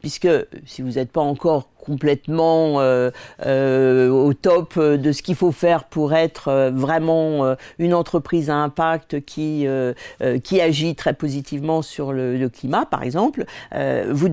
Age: 50-69